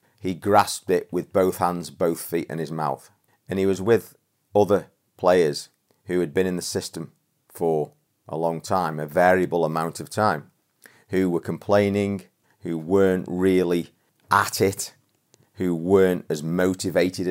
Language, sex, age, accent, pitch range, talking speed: English, male, 40-59, British, 80-95 Hz, 155 wpm